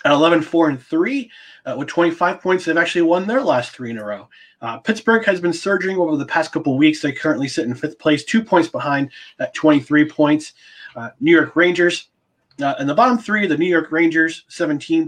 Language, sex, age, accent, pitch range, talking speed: English, male, 30-49, American, 140-195 Hz, 205 wpm